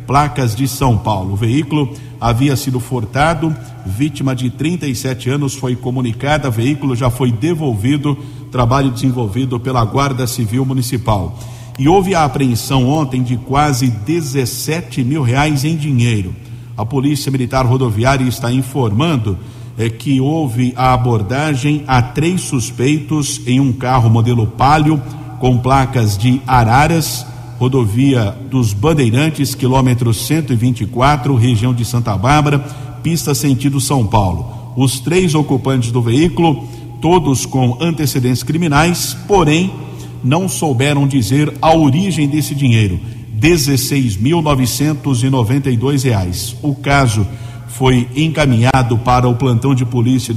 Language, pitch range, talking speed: Portuguese, 120-145 Hz, 120 wpm